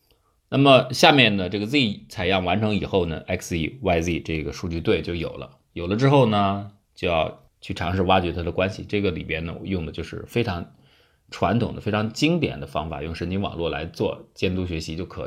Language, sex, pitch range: Chinese, male, 80-105 Hz